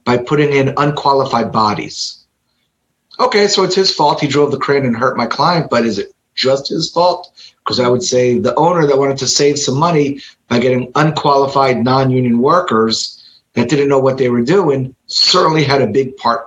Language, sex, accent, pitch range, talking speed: English, male, American, 130-160 Hz, 195 wpm